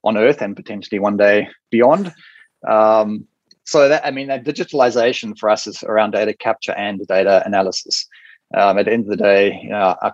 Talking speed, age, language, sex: 190 wpm, 20-39, English, male